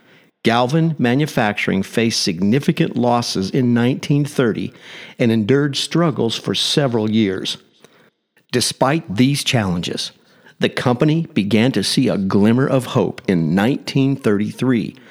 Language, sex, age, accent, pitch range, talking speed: English, male, 50-69, American, 115-155 Hz, 105 wpm